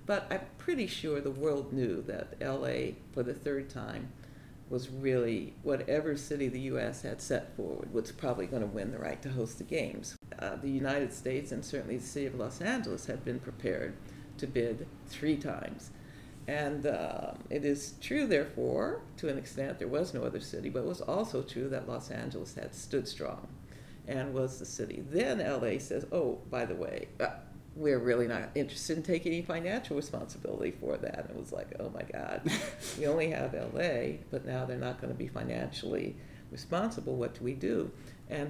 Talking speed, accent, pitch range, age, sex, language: 190 wpm, American, 125-145 Hz, 60-79, female, English